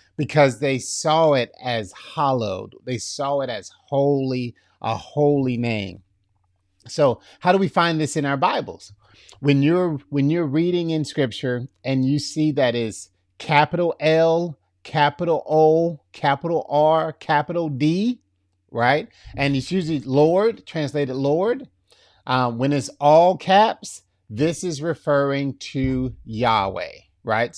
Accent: American